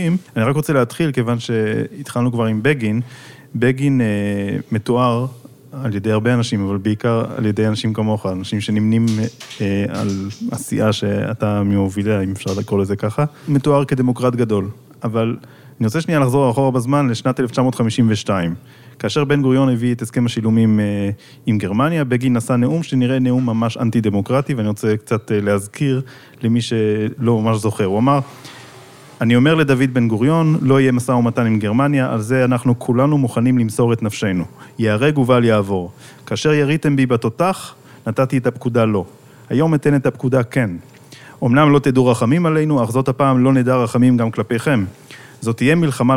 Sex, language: male, Hebrew